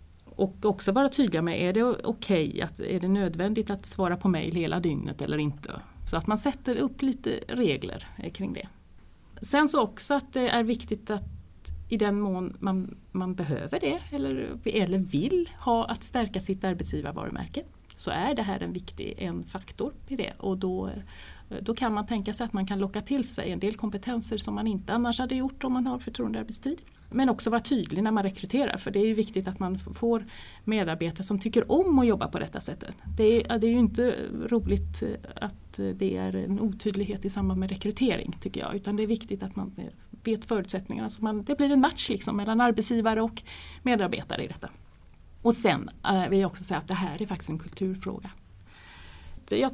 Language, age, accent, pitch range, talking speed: Swedish, 30-49, native, 185-235 Hz, 200 wpm